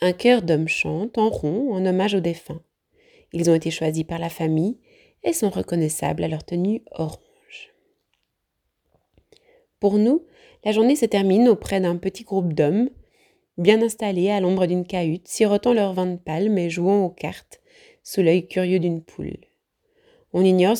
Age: 20-39